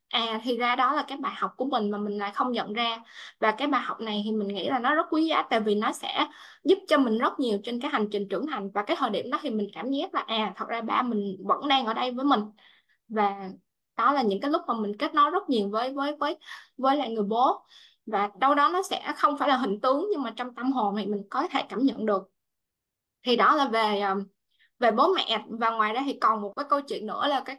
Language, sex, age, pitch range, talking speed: Vietnamese, female, 10-29, 215-290 Hz, 270 wpm